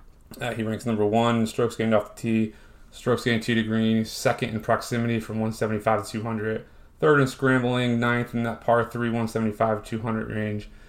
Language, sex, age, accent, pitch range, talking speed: English, male, 30-49, American, 105-115 Hz, 185 wpm